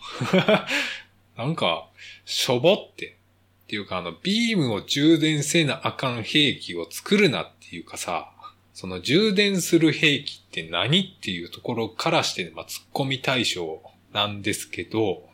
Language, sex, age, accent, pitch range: Japanese, male, 20-39, native, 100-150 Hz